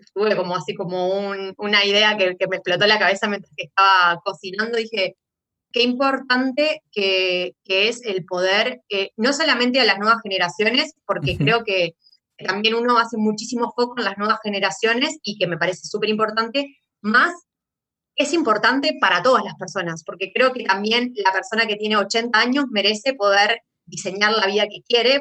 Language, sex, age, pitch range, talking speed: Spanish, female, 20-39, 185-235 Hz, 175 wpm